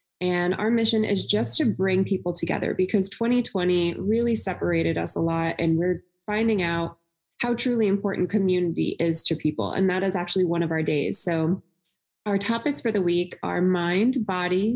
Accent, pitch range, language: American, 175-215 Hz, English